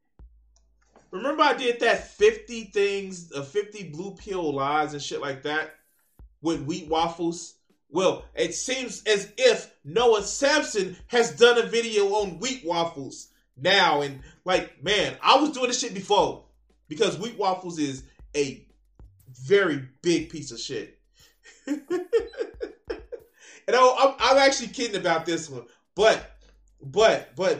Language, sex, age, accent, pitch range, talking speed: English, male, 20-39, American, 135-210 Hz, 135 wpm